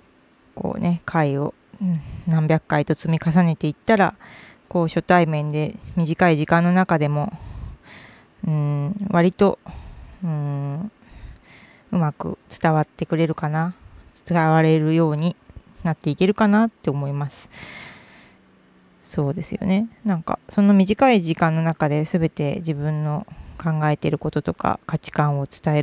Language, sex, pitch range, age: Japanese, female, 150-185 Hz, 20-39